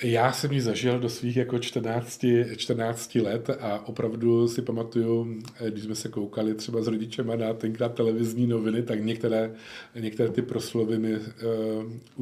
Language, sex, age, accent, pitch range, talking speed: Czech, male, 40-59, native, 105-115 Hz, 150 wpm